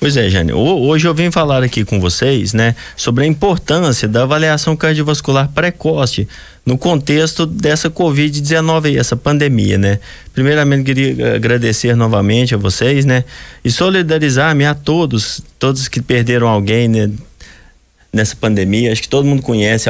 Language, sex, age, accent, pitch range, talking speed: Portuguese, male, 20-39, Brazilian, 110-150 Hz, 155 wpm